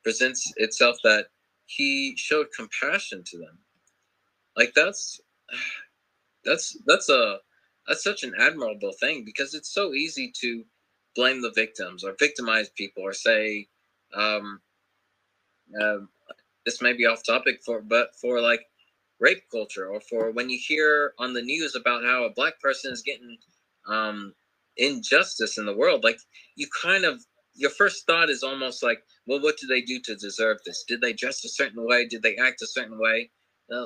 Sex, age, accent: male, 20-39, American